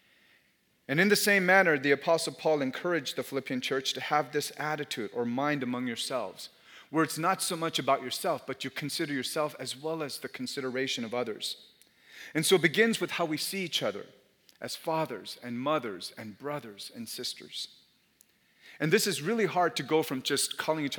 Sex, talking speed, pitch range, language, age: male, 190 wpm, 130-175 Hz, English, 40-59